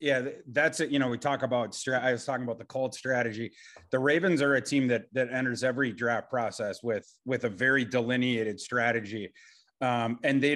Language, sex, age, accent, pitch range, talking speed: English, male, 30-49, American, 125-145 Hz, 205 wpm